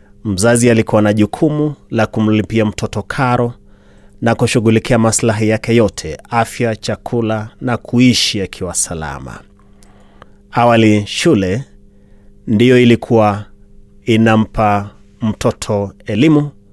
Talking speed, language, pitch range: 95 wpm, Swahili, 100-125 Hz